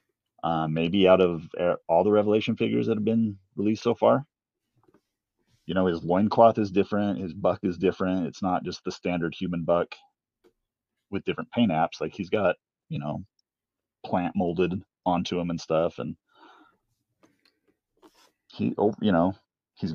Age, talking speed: 30-49, 155 wpm